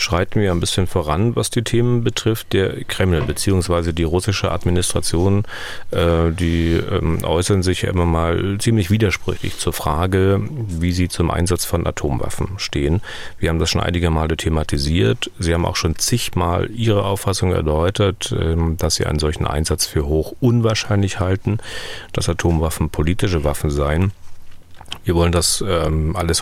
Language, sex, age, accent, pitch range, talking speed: German, male, 40-59, German, 85-100 Hz, 145 wpm